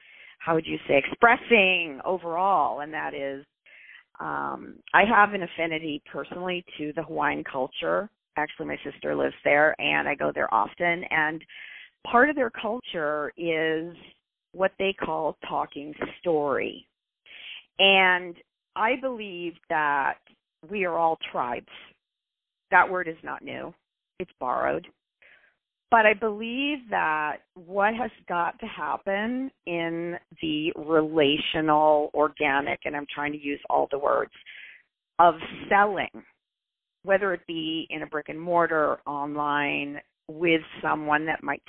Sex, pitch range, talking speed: female, 150-200 Hz, 130 wpm